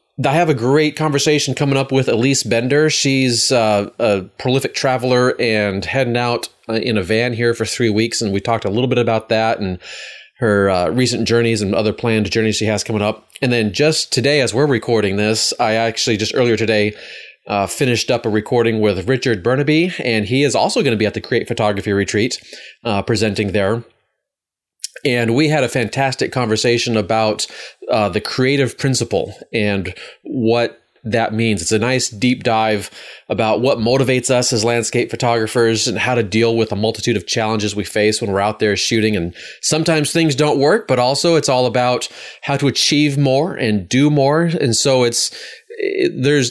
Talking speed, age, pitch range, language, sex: 190 wpm, 30-49, 110-135 Hz, English, male